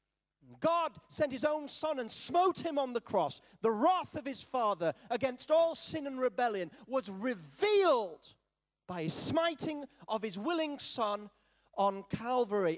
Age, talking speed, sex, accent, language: 40-59, 150 wpm, male, British, English